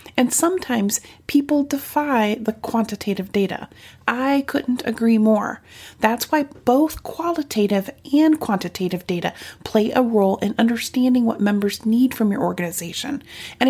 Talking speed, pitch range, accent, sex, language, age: 130 wpm, 205-275 Hz, American, female, English, 30-49